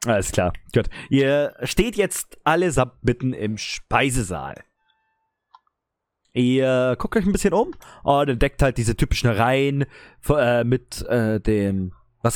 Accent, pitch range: German, 105-150 Hz